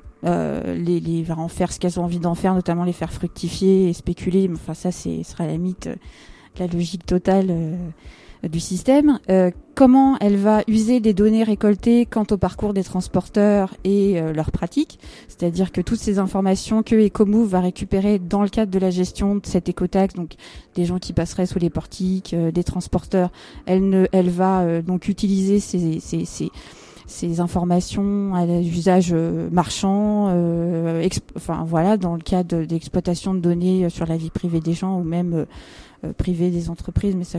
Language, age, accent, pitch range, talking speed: French, 20-39, French, 175-205 Hz, 185 wpm